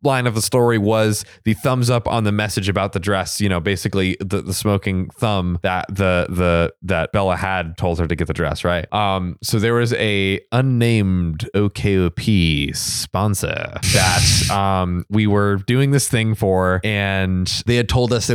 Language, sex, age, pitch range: English, male, 20-39, 100-125 Hz